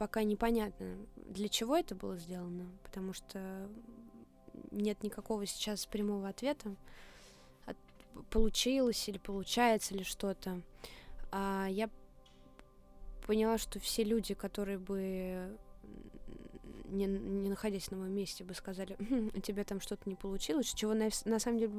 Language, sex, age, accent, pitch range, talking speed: Russian, female, 20-39, native, 180-210 Hz, 130 wpm